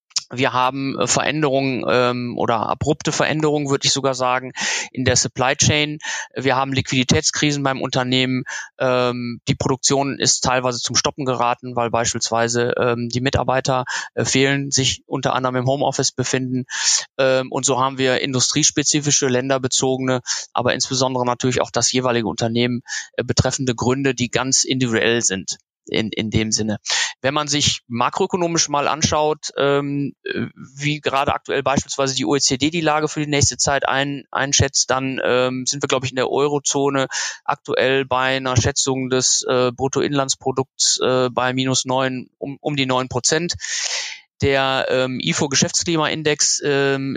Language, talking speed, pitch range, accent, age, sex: German, 150 wpm, 125-140 Hz, German, 30-49, male